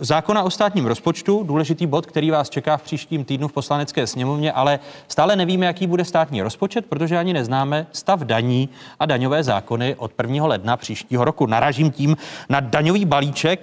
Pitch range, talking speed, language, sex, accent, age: 125-170 Hz, 175 wpm, Czech, male, native, 30-49